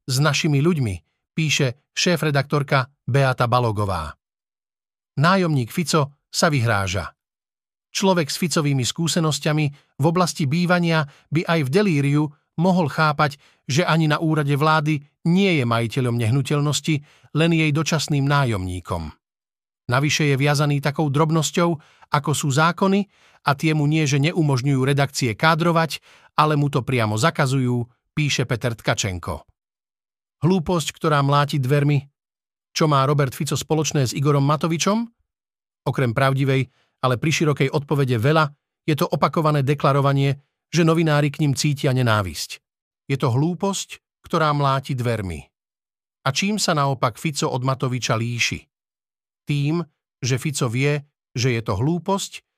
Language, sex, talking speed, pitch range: Slovak, male, 125 wpm, 130-160 Hz